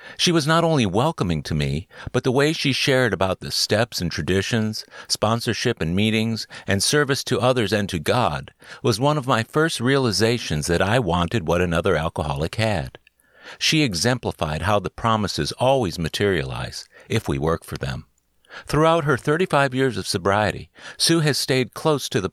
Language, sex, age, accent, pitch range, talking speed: English, male, 50-69, American, 95-130 Hz, 170 wpm